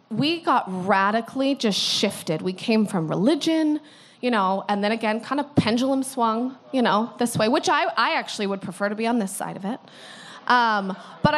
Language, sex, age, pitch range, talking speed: English, female, 20-39, 205-290 Hz, 195 wpm